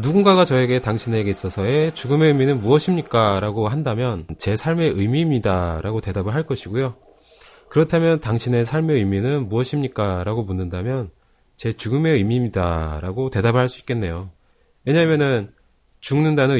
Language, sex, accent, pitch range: Korean, male, native, 95-140 Hz